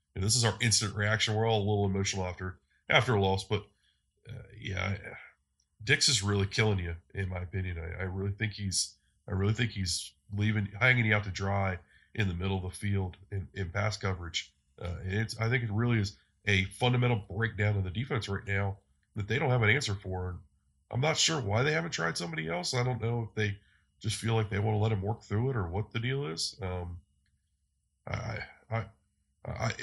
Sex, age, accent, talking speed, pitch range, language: male, 20-39, American, 210 wpm, 95-120 Hz, English